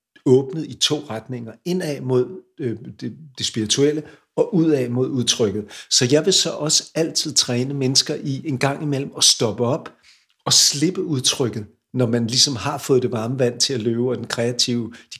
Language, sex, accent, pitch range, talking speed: Danish, male, native, 120-145 Hz, 185 wpm